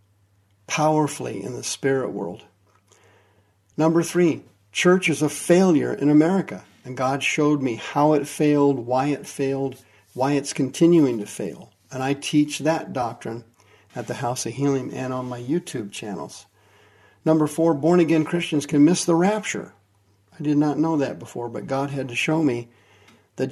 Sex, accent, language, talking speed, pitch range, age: male, American, English, 165 wpm, 105-155 Hz, 50-69